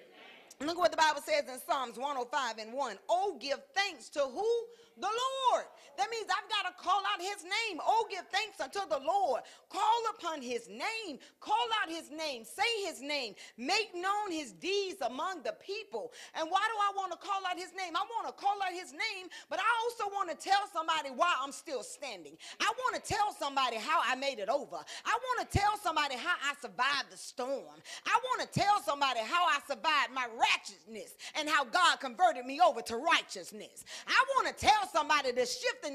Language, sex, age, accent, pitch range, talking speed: English, female, 40-59, American, 245-390 Hz, 205 wpm